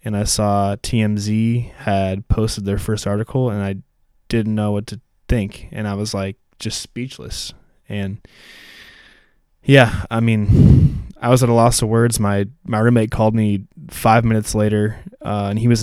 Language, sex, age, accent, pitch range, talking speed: English, male, 20-39, American, 100-115 Hz, 170 wpm